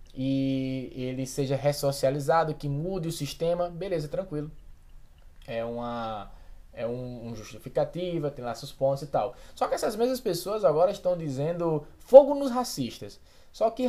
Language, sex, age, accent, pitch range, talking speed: Portuguese, male, 20-39, Brazilian, 135-180 Hz, 150 wpm